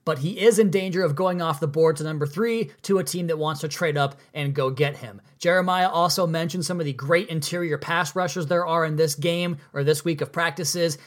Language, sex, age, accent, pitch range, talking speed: English, male, 20-39, American, 150-180 Hz, 245 wpm